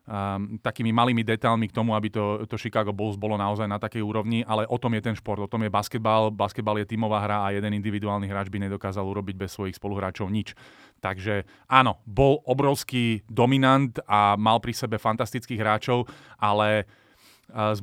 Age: 30-49